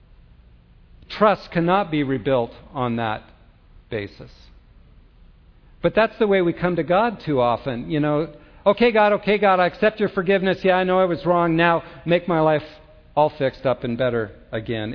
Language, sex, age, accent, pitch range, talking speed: English, male, 50-69, American, 125-185 Hz, 175 wpm